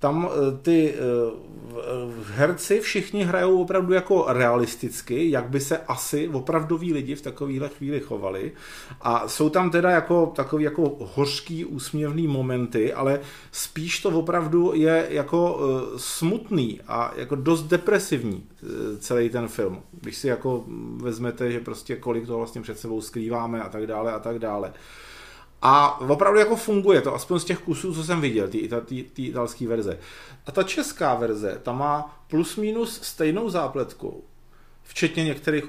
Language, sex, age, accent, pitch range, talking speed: Czech, male, 40-59, native, 125-165 Hz, 145 wpm